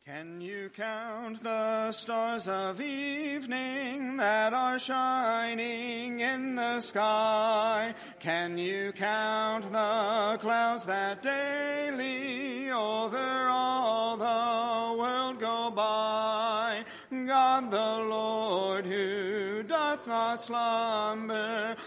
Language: English